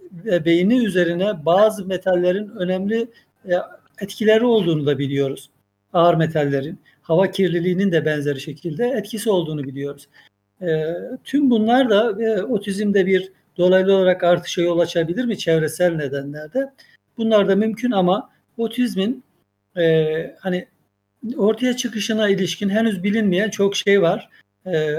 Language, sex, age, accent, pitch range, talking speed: Turkish, male, 60-79, native, 165-215 Hz, 120 wpm